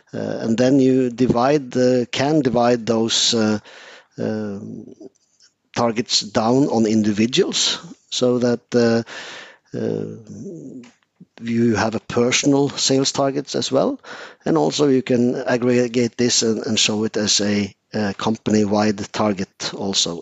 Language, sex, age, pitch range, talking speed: English, male, 50-69, 110-125 Hz, 130 wpm